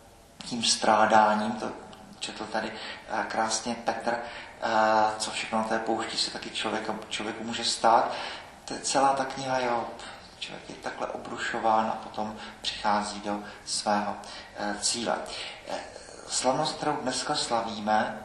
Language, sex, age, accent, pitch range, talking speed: Czech, male, 40-59, native, 110-130 Hz, 120 wpm